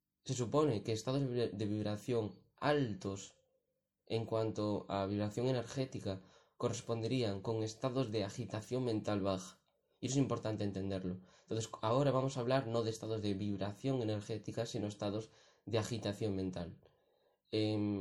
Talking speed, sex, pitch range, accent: 135 wpm, male, 105-125 Hz, Spanish